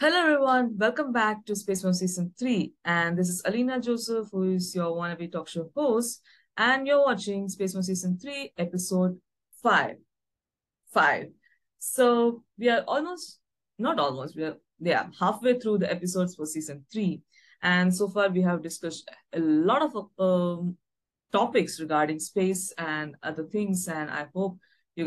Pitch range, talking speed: 155-230 Hz, 155 wpm